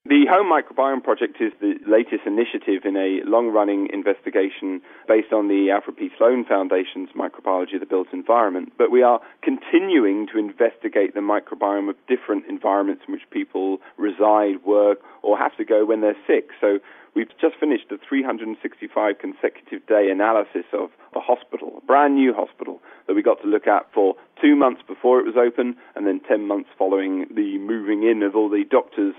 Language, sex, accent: English, male, British